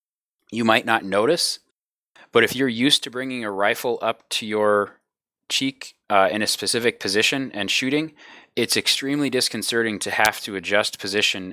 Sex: male